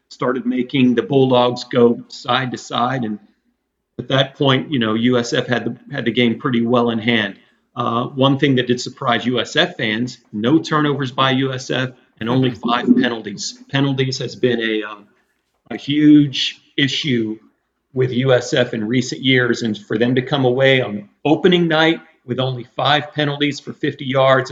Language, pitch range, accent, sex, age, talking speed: English, 125-150 Hz, American, male, 40-59, 170 wpm